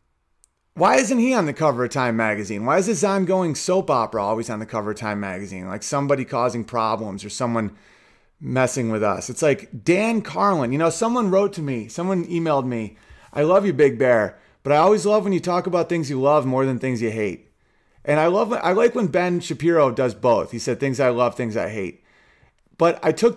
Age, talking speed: 30-49, 220 wpm